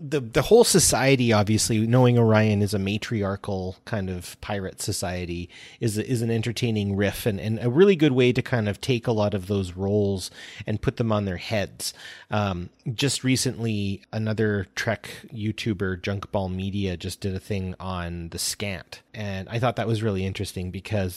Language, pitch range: English, 95-115 Hz